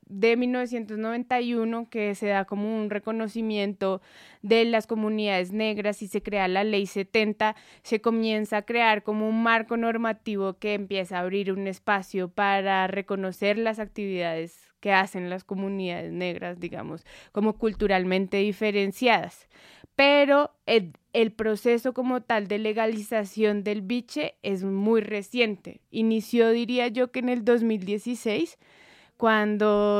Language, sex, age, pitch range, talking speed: Spanish, female, 20-39, 200-230 Hz, 130 wpm